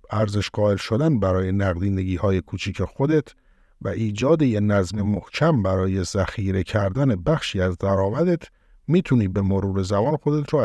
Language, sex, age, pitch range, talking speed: Persian, male, 50-69, 100-145 Hz, 135 wpm